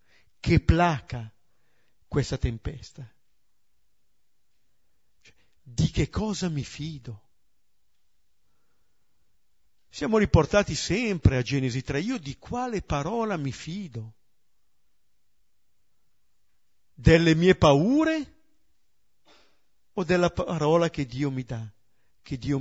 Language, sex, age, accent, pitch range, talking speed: Italian, male, 50-69, native, 115-170 Hz, 90 wpm